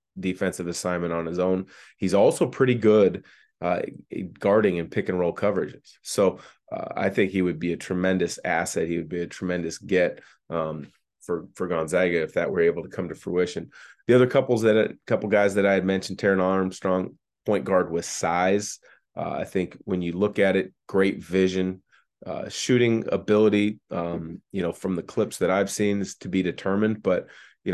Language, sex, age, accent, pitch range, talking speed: English, male, 30-49, American, 90-100 Hz, 195 wpm